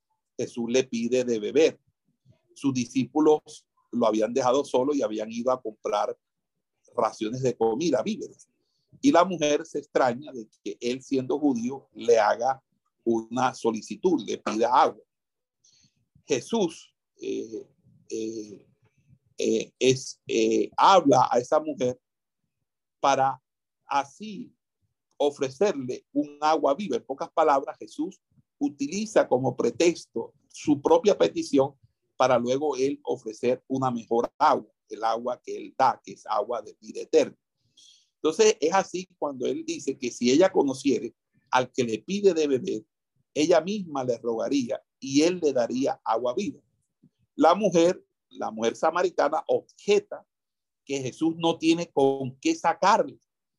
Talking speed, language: 135 wpm, Spanish